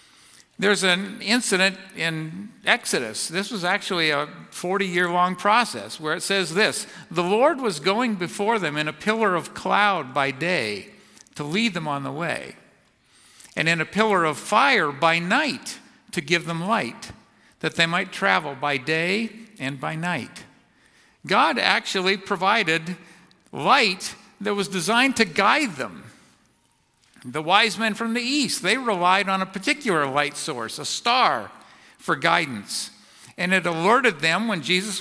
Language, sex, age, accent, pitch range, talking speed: English, male, 50-69, American, 160-215 Hz, 150 wpm